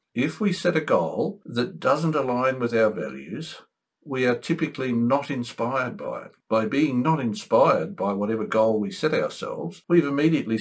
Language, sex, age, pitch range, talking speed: English, male, 60-79, 110-155 Hz, 170 wpm